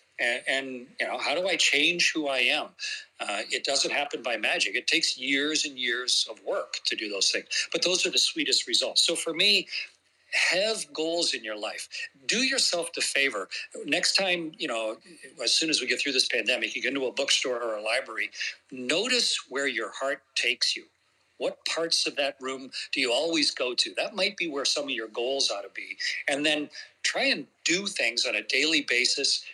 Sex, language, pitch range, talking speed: male, English, 135-215 Hz, 210 wpm